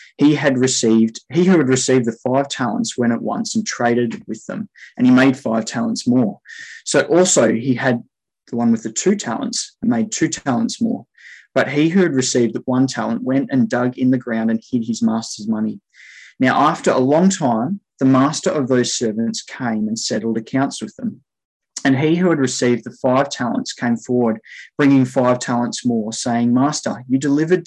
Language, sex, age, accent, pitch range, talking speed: English, male, 20-39, Australian, 115-155 Hz, 195 wpm